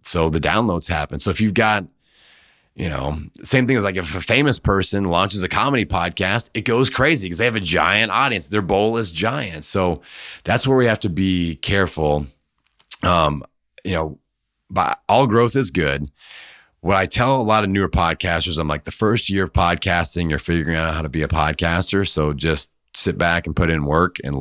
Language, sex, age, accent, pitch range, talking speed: English, male, 30-49, American, 80-100 Hz, 200 wpm